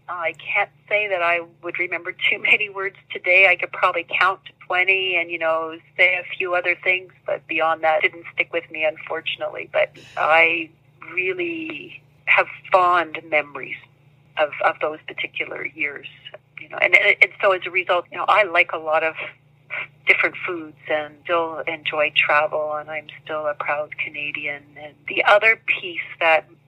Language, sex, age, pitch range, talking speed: English, female, 40-59, 155-180 Hz, 170 wpm